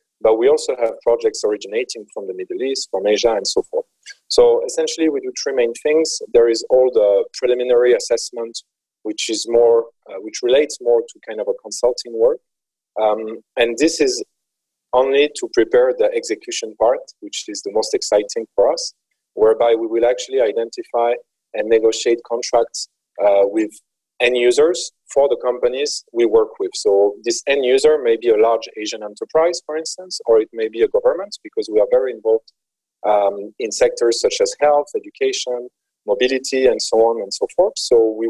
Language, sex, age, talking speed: English, male, 30-49, 180 wpm